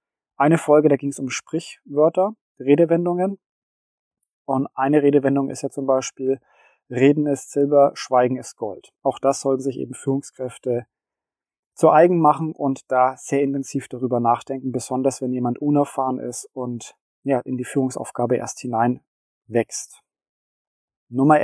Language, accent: German, German